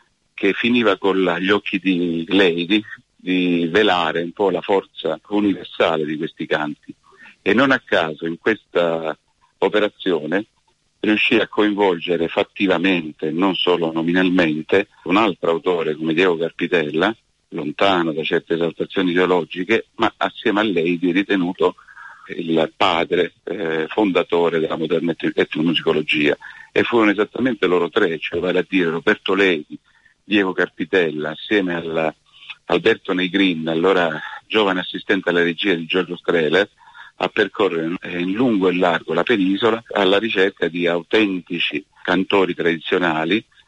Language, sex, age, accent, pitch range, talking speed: Italian, male, 50-69, native, 85-95 Hz, 130 wpm